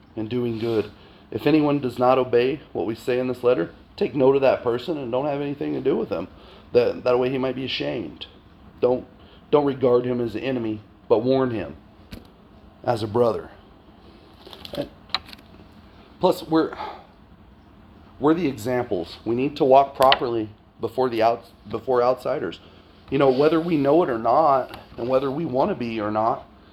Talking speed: 175 wpm